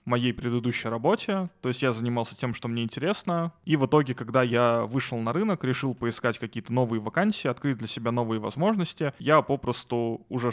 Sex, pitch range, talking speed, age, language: male, 115-130 Hz, 180 wpm, 20-39, Russian